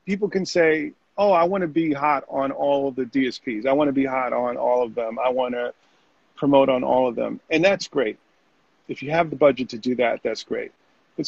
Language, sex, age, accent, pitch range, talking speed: English, male, 40-59, American, 130-165 Hz, 240 wpm